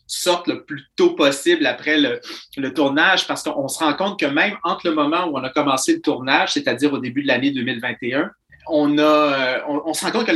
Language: French